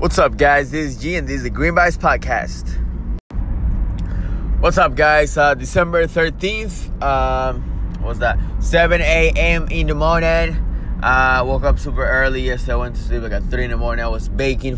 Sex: male